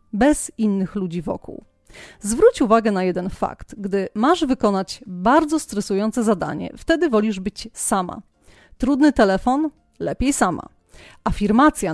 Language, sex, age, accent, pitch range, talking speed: Polish, female, 30-49, native, 200-260 Hz, 120 wpm